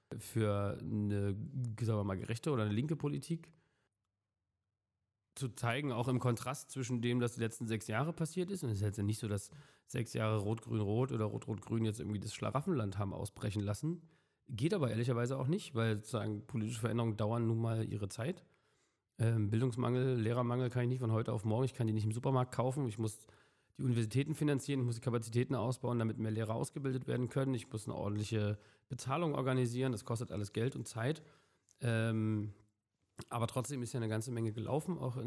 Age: 40-59